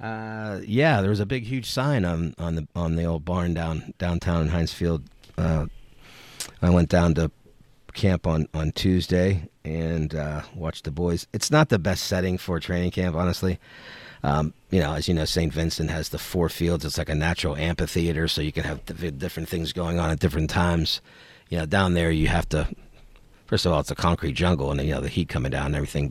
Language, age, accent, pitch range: English, 50-69, American, 80-95 Hz